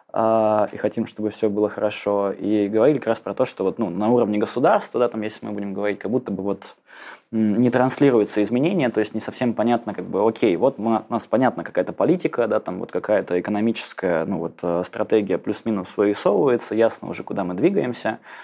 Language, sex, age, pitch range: Russian, male, 20-39, 100-115 Hz